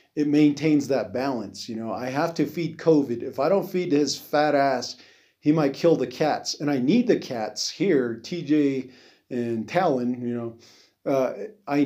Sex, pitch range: male, 120-145 Hz